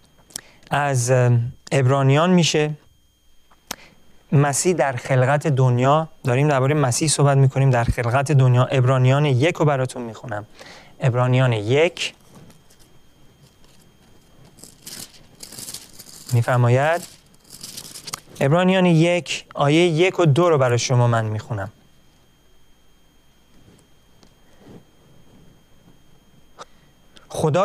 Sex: male